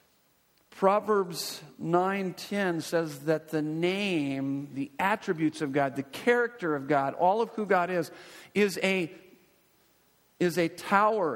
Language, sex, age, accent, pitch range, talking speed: English, male, 50-69, American, 150-180 Hz, 130 wpm